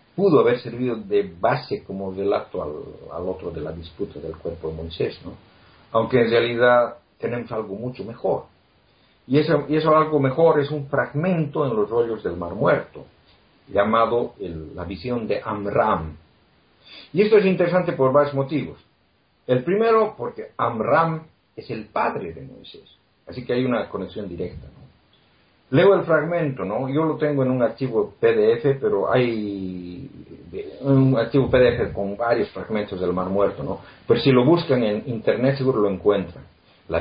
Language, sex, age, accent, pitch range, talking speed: Spanish, male, 50-69, Mexican, 100-160 Hz, 165 wpm